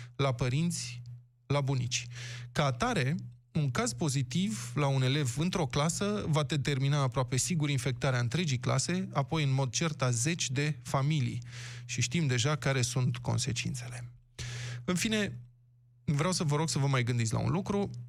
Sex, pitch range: male, 120-160 Hz